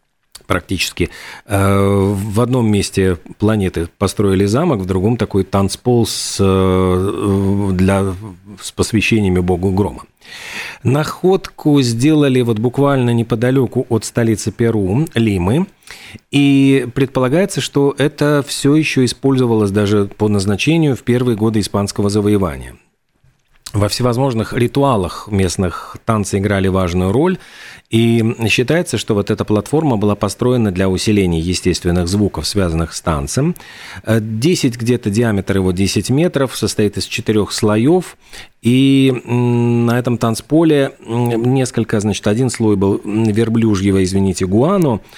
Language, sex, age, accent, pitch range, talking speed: Russian, male, 40-59, native, 100-130 Hz, 115 wpm